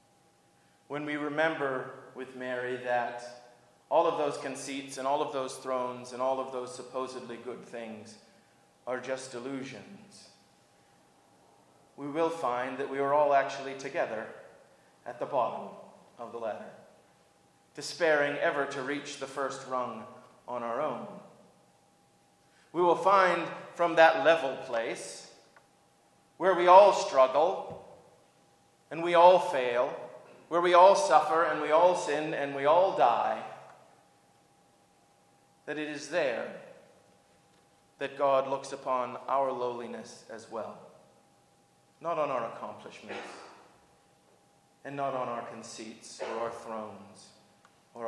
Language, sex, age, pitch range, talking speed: English, male, 30-49, 120-155 Hz, 125 wpm